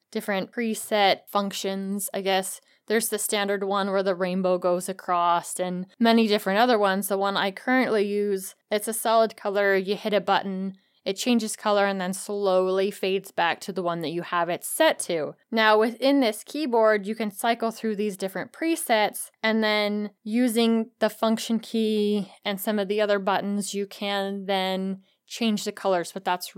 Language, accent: English, American